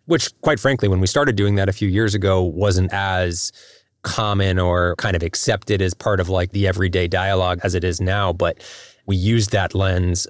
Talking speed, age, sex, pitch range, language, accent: 205 wpm, 20-39, male, 90-105 Hz, English, American